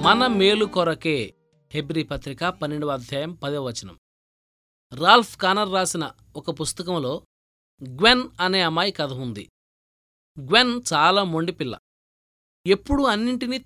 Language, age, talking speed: Telugu, 20-39, 100 wpm